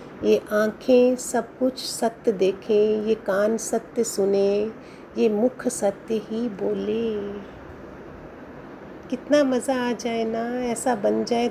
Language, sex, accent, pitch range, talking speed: Hindi, female, native, 215-250 Hz, 120 wpm